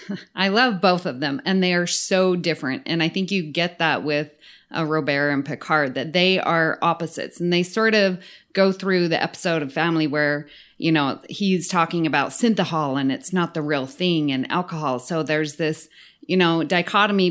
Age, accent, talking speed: 30-49, American, 195 wpm